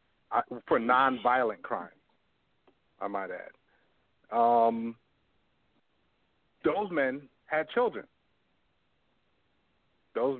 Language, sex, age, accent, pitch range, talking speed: English, male, 50-69, American, 115-150 Hz, 75 wpm